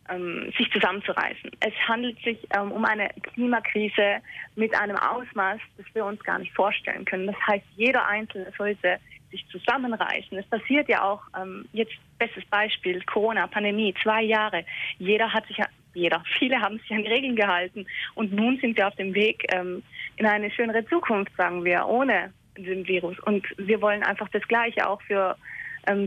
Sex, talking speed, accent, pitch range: female, 170 wpm, German, 190-220 Hz